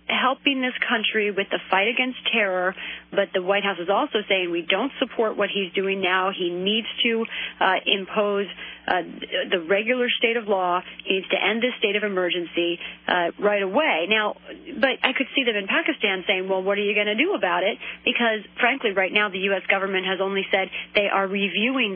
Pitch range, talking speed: 185-225 Hz, 205 wpm